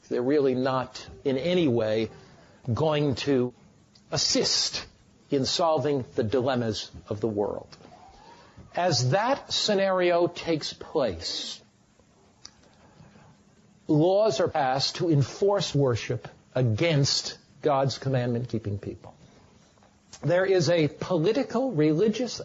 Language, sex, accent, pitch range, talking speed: English, male, American, 130-180 Hz, 95 wpm